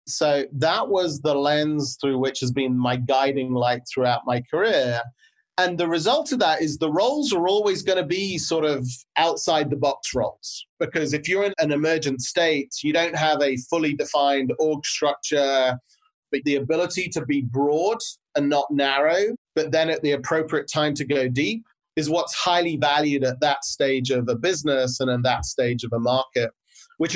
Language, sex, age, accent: English, male, 30-49, British